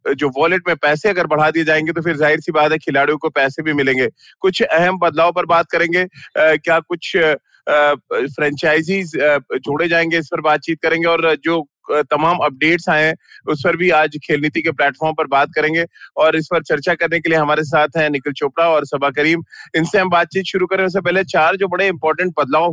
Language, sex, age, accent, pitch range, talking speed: Hindi, male, 30-49, native, 150-170 Hz, 205 wpm